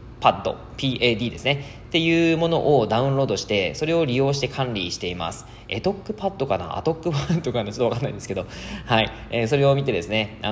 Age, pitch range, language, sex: 20-39, 110-170 Hz, Japanese, male